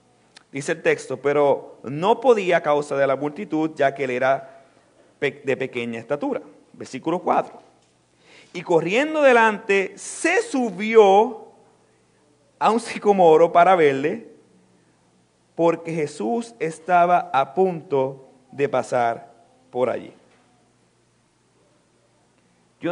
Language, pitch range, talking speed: Spanish, 140-220 Hz, 105 wpm